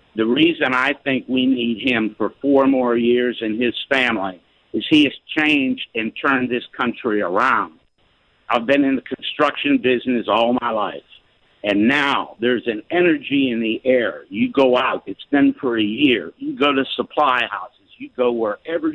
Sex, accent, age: male, American, 60-79